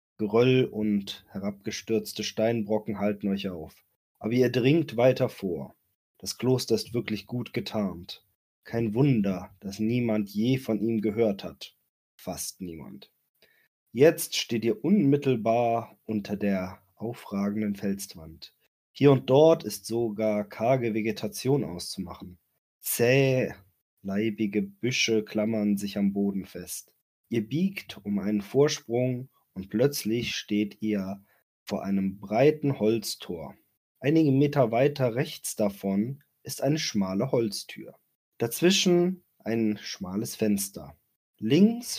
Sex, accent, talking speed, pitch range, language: male, German, 115 wpm, 105-135 Hz, German